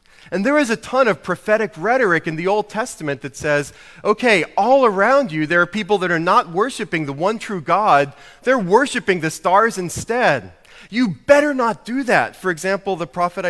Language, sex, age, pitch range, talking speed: English, male, 30-49, 140-200 Hz, 190 wpm